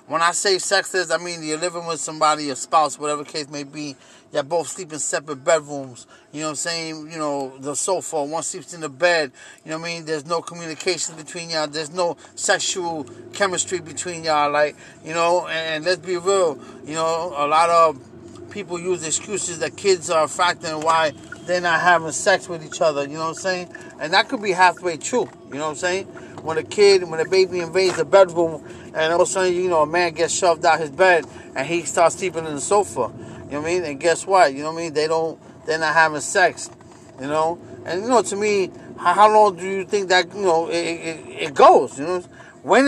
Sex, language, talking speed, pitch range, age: male, English, 240 wpm, 160-190 Hz, 30-49